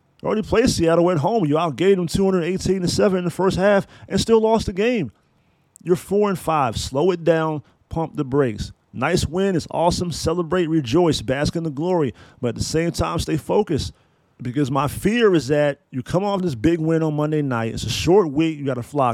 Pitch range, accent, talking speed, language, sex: 145-190 Hz, American, 210 wpm, English, male